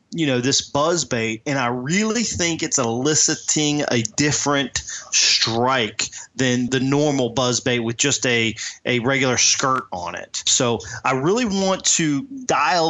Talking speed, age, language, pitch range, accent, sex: 155 wpm, 30-49, English, 115-140 Hz, American, male